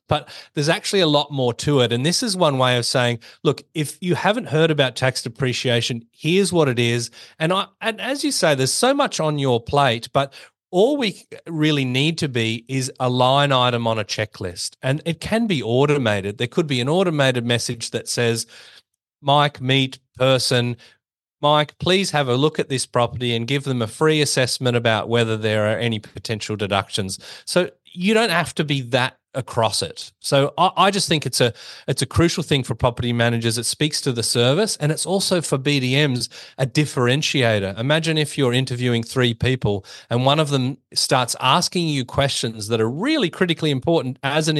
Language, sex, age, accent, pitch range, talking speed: English, male, 30-49, Australian, 120-155 Hz, 195 wpm